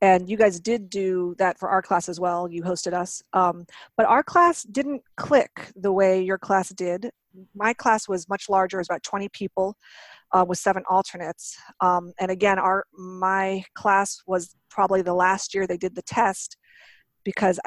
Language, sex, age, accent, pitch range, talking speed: English, female, 40-59, American, 180-205 Hz, 185 wpm